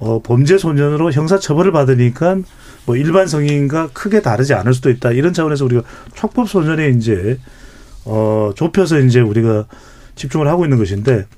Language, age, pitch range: Korean, 40-59, 120-170 Hz